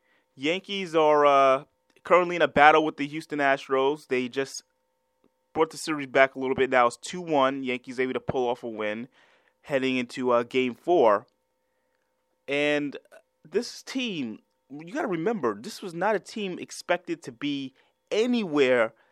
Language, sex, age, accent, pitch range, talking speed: English, male, 30-49, American, 130-170 Hz, 160 wpm